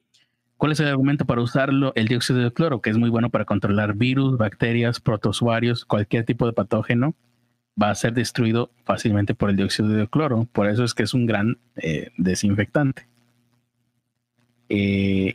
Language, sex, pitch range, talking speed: Spanish, male, 110-125 Hz, 170 wpm